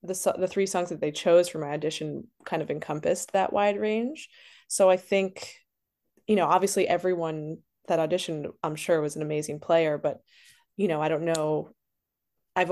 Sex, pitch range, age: female, 160-195 Hz, 20-39